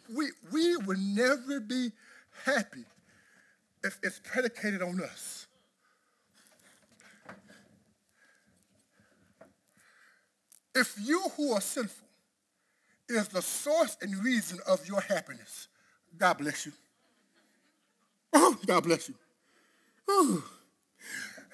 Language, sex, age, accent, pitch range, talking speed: English, male, 50-69, American, 195-285 Hz, 90 wpm